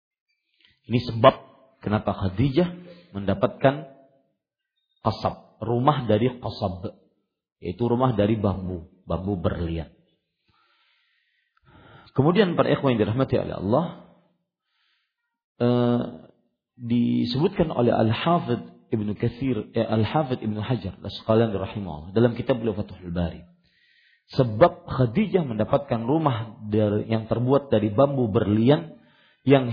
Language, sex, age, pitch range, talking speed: Malay, male, 40-59, 105-140 Hz, 95 wpm